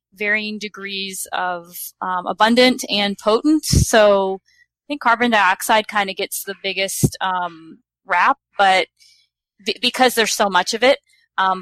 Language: English